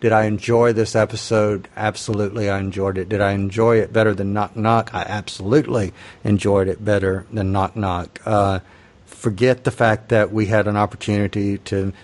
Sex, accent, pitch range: male, American, 100-115 Hz